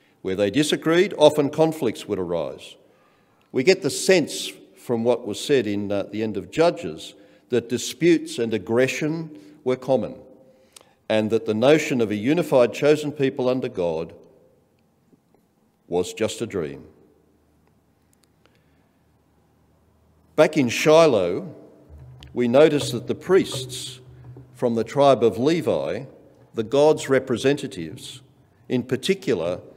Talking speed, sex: 120 wpm, male